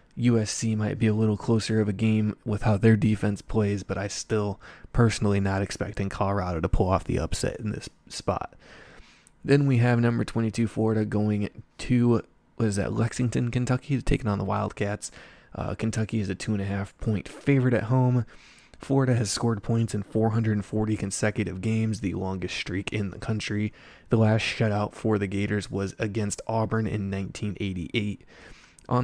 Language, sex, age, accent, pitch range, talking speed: English, male, 20-39, American, 100-115 Hz, 165 wpm